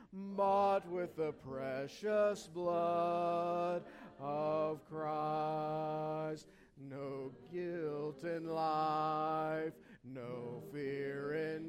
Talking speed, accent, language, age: 70 wpm, American, English, 50-69